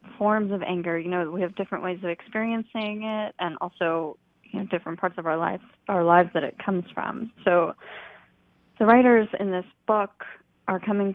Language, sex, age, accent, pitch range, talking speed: English, female, 20-39, American, 175-200 Hz, 190 wpm